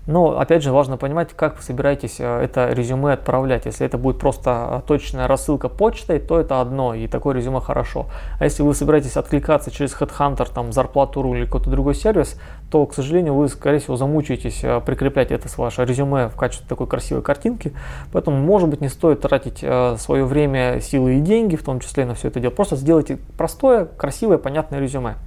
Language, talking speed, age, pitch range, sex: Russian, 190 wpm, 20-39, 130-155 Hz, male